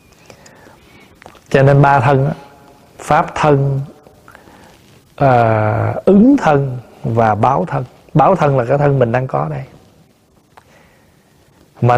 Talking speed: 105 wpm